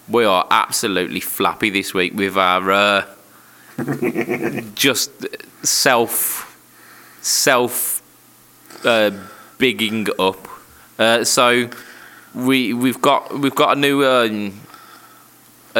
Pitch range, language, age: 100-120 Hz, English, 20-39